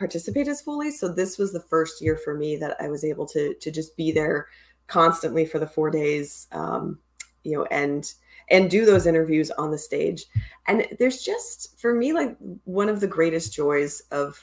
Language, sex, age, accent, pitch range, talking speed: English, female, 20-39, American, 155-195 Hz, 200 wpm